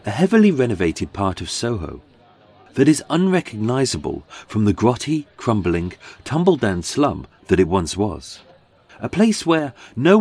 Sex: male